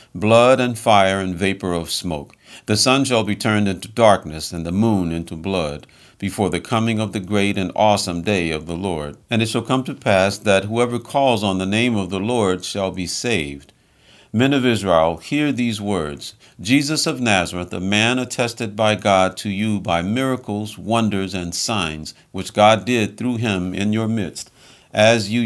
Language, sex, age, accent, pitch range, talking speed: English, male, 50-69, American, 90-115 Hz, 190 wpm